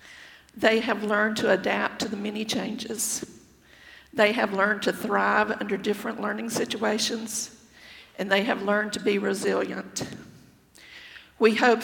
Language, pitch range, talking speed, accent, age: English, 205-230 Hz, 135 wpm, American, 50-69